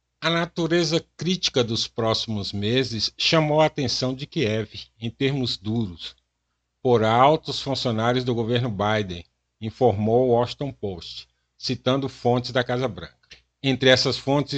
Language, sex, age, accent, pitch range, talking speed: Portuguese, male, 60-79, Brazilian, 105-135 Hz, 130 wpm